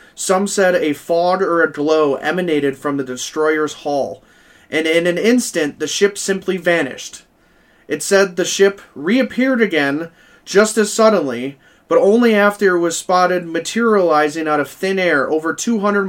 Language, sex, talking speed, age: English, male, 155 wpm, 30-49